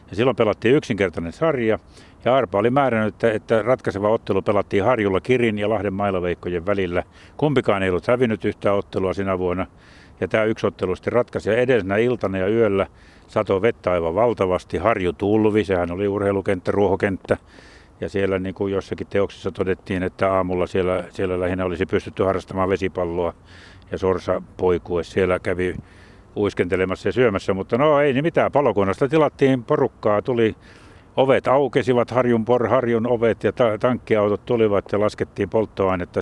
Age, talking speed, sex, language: 60-79, 155 wpm, male, Finnish